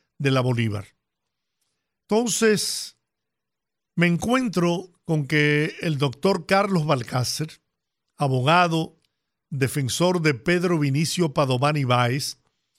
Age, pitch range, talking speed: 50-69, 145-185 Hz, 90 wpm